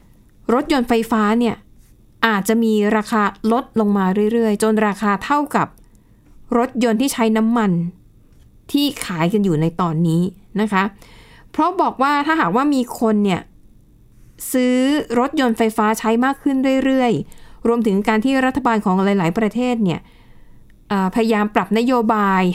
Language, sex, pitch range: Thai, female, 200-245 Hz